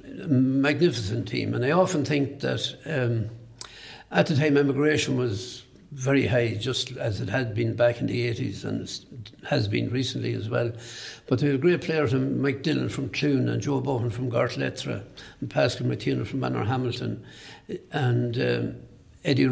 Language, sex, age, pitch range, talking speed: English, male, 60-79, 120-140 Hz, 170 wpm